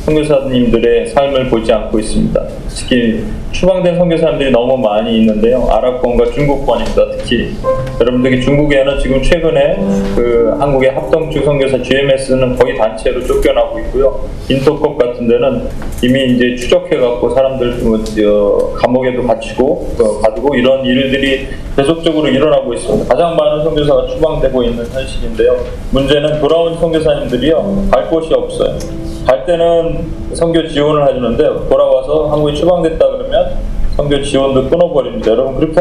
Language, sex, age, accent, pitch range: Korean, male, 20-39, native, 130-180 Hz